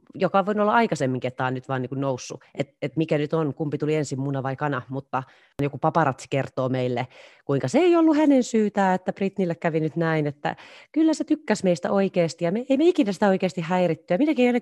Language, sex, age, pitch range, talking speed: Finnish, female, 30-49, 130-180 Hz, 225 wpm